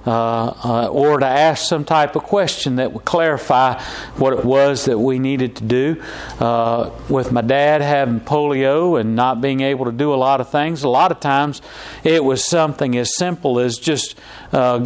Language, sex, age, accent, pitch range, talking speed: English, male, 40-59, American, 130-155 Hz, 195 wpm